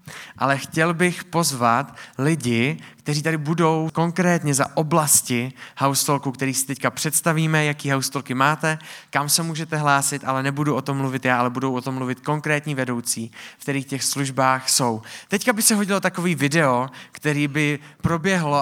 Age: 20-39